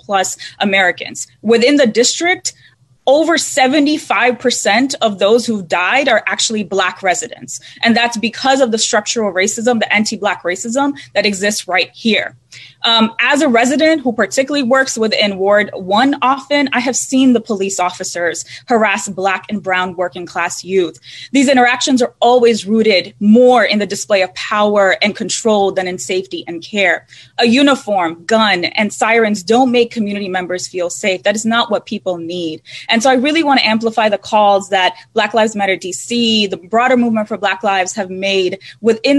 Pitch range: 195-240 Hz